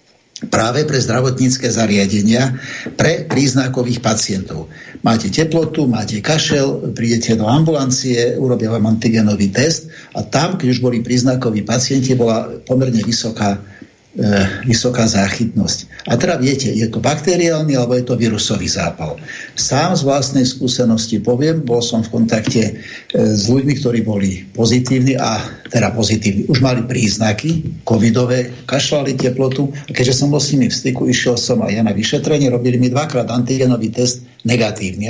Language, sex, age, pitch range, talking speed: Slovak, male, 60-79, 115-135 Hz, 145 wpm